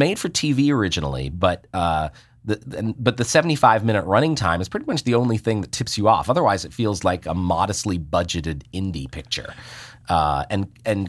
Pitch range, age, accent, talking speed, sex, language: 90-120 Hz, 30-49, American, 185 wpm, male, English